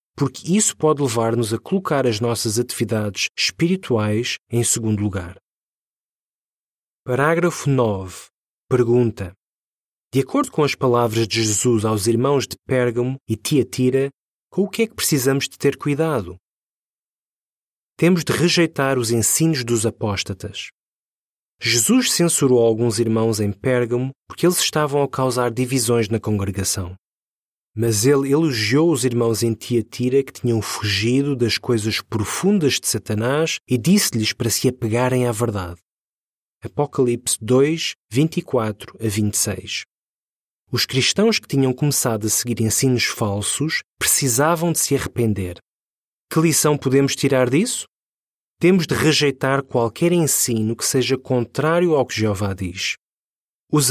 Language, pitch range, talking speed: Portuguese, 115-145 Hz, 130 wpm